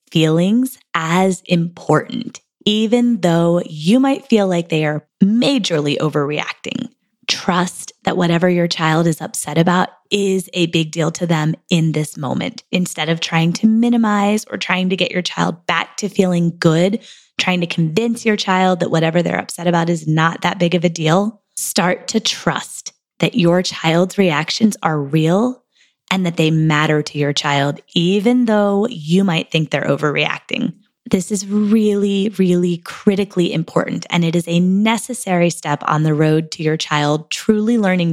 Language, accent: English, American